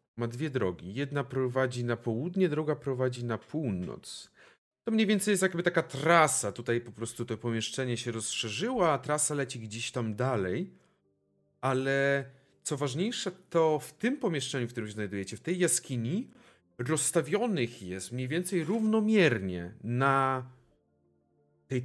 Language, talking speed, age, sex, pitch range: Polish, 145 wpm, 40-59, male, 100-155 Hz